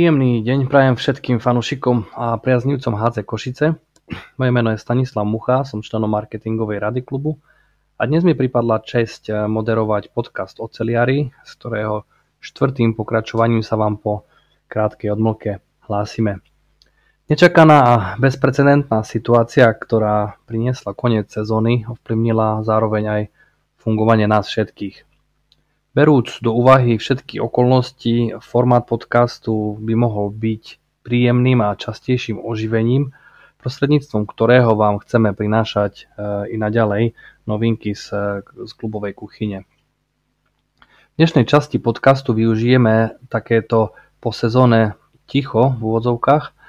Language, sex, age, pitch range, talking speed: Slovak, male, 20-39, 110-125 Hz, 115 wpm